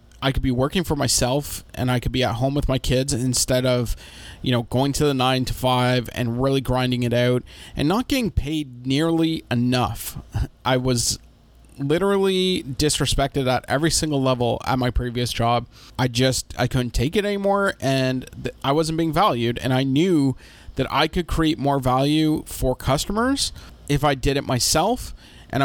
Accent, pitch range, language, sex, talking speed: American, 120-140 Hz, English, male, 180 wpm